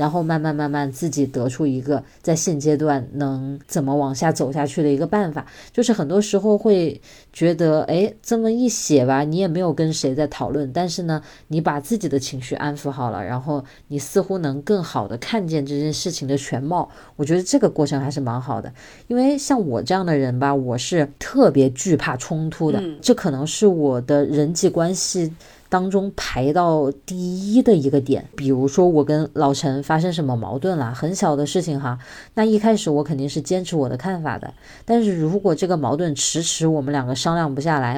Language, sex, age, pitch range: Chinese, female, 20-39, 140-185 Hz